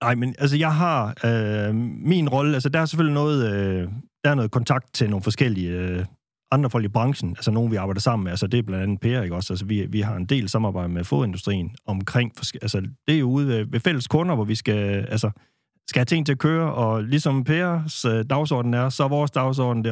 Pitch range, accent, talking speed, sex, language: 105-140 Hz, native, 240 wpm, male, Danish